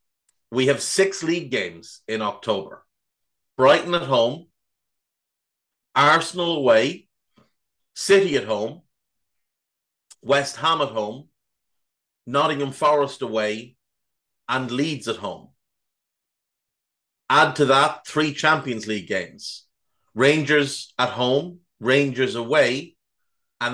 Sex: male